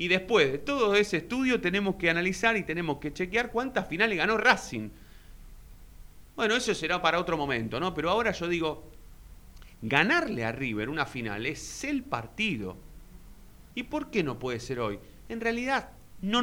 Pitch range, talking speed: 115-195 Hz, 170 wpm